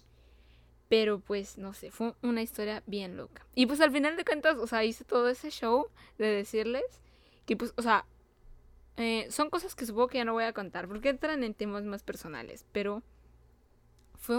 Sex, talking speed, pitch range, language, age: female, 190 wpm, 195-245 Hz, Spanish, 20-39